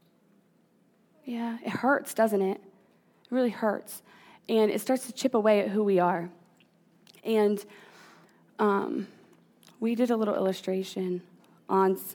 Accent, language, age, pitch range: American, English, 20-39, 185-220 Hz